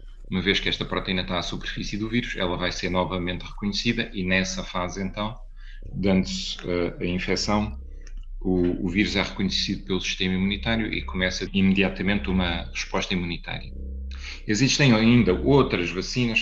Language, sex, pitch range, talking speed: Portuguese, male, 90-105 Hz, 145 wpm